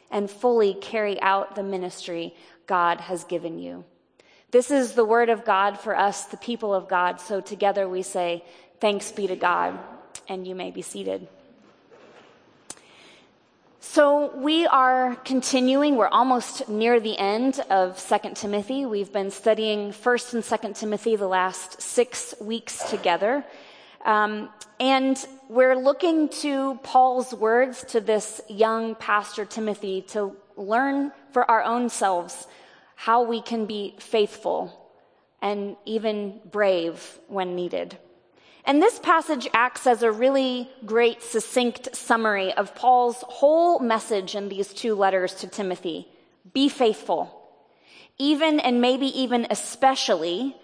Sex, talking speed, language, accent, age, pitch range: female, 135 wpm, English, American, 20-39, 195-250 Hz